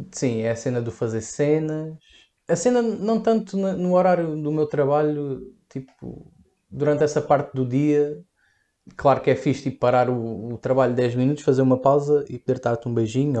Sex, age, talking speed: male, 20-39, 185 wpm